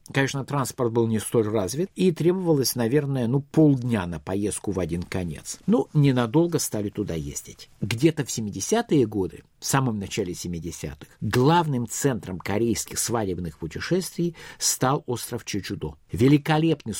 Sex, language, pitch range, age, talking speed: male, Russian, 110-150 Hz, 50-69, 135 wpm